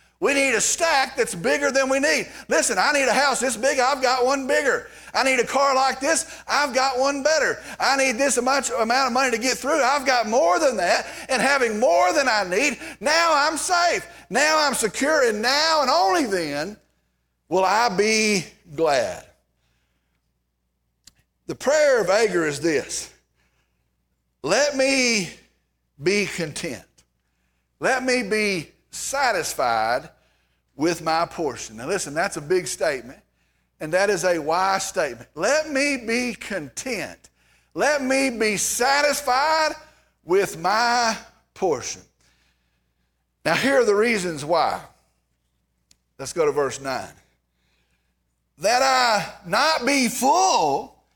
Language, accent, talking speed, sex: English, American, 145 wpm, male